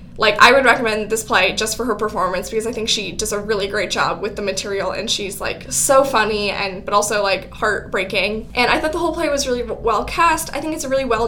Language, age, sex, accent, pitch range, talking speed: English, 10-29, female, American, 215-255 Hz, 255 wpm